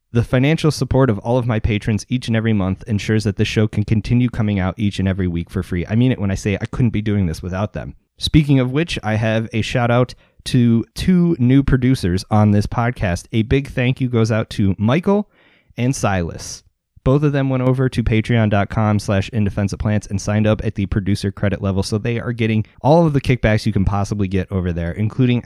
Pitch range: 95-125 Hz